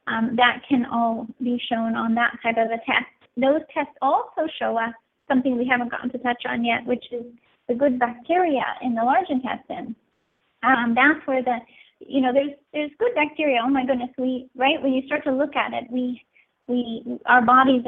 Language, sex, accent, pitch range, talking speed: English, female, American, 235-265 Hz, 200 wpm